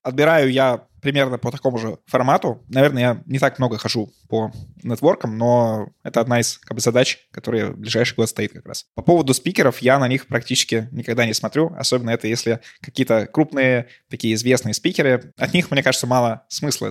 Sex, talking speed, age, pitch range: male, 175 wpm, 20-39, 110-130 Hz